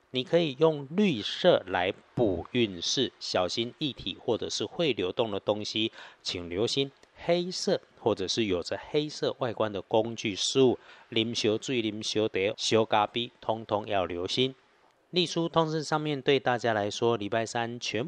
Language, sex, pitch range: Chinese, male, 105-140 Hz